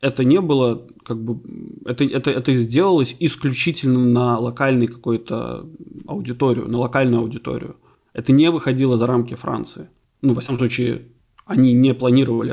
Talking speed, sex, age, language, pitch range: 145 wpm, male, 20-39, Russian, 125-155 Hz